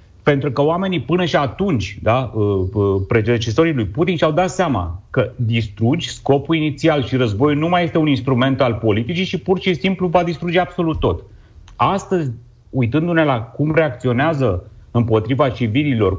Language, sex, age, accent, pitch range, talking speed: Romanian, male, 30-49, native, 100-145 Hz, 150 wpm